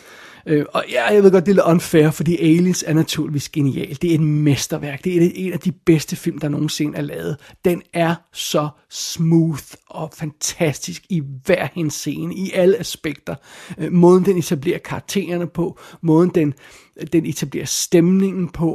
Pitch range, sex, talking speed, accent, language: 155-185 Hz, male, 165 wpm, native, Danish